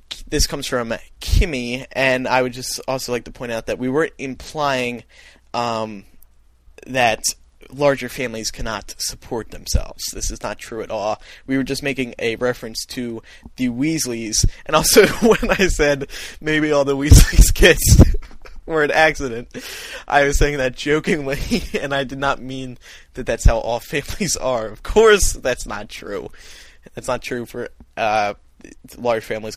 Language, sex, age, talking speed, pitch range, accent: English, male, 20-39, 160 wpm, 115-140 Hz, American